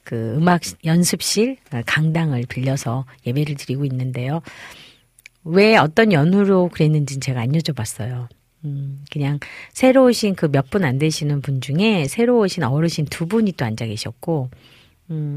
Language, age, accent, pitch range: Korean, 40-59, native, 130-180 Hz